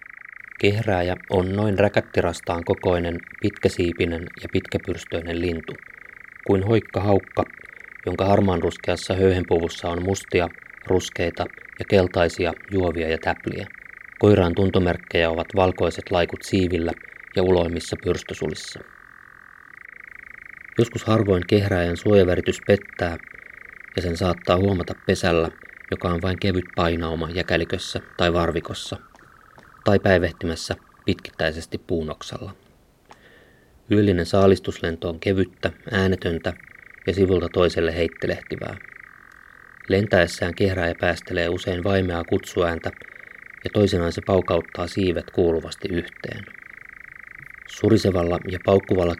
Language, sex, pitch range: Finnish, male, 85-100 Hz